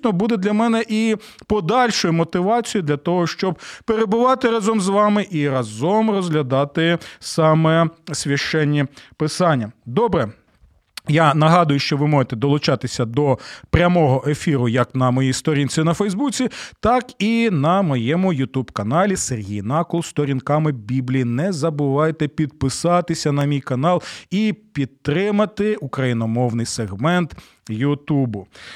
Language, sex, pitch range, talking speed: Ukrainian, male, 140-210 Hz, 115 wpm